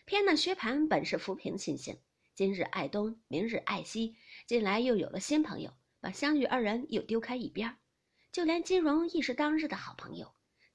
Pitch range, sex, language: 220-310 Hz, female, Chinese